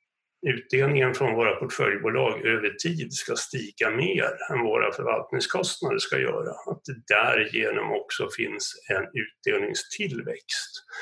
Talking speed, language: 115 wpm, Swedish